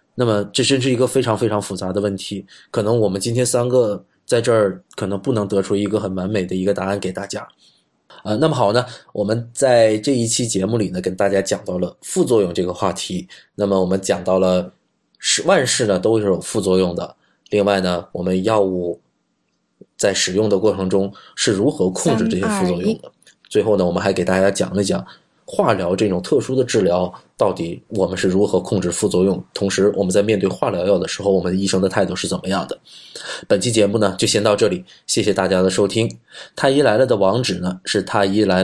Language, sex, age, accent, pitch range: Chinese, male, 20-39, native, 95-110 Hz